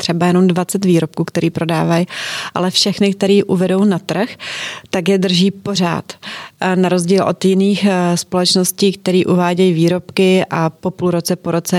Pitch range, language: 175-195 Hz, Czech